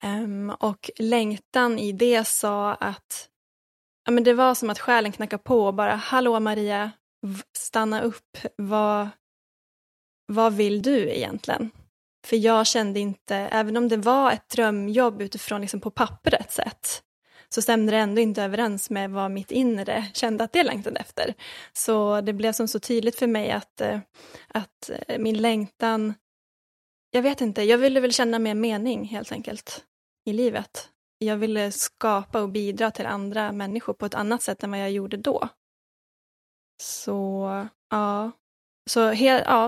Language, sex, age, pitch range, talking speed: English, female, 10-29, 210-245 Hz, 155 wpm